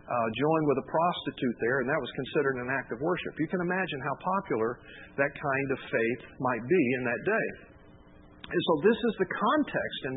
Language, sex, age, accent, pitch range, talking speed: English, male, 50-69, American, 105-170 Hz, 205 wpm